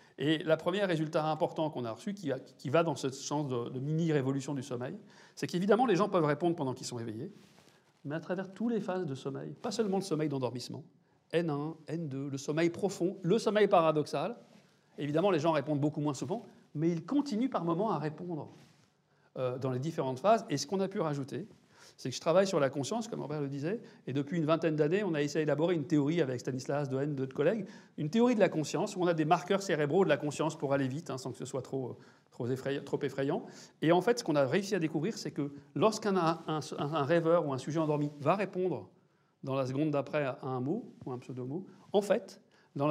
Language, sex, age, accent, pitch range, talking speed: French, male, 40-59, French, 145-185 Hz, 225 wpm